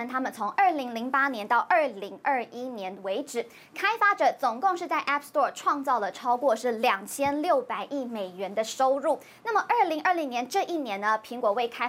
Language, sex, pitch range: Chinese, male, 240-335 Hz